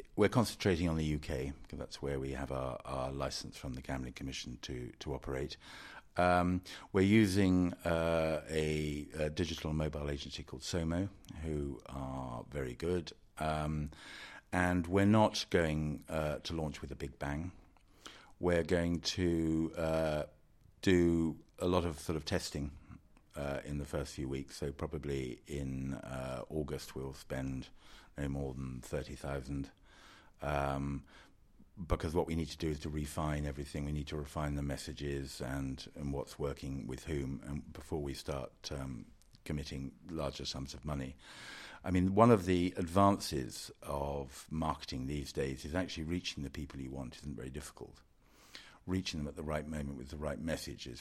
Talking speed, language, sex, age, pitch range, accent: 165 wpm, English, male, 50-69, 70-85 Hz, British